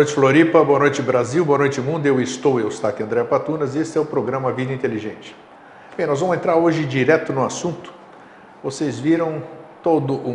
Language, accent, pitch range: Portuguese, Brazilian, 130-160 Hz